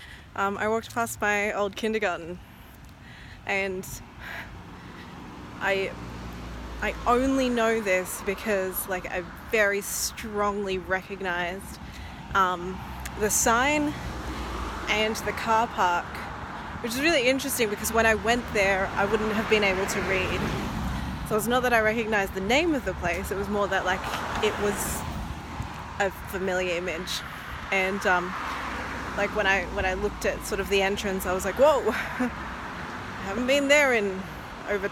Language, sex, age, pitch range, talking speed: English, female, 20-39, 180-220 Hz, 150 wpm